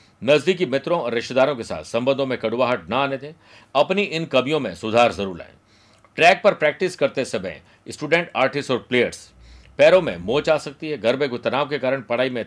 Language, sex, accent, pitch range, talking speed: Hindi, male, native, 120-155 Hz, 200 wpm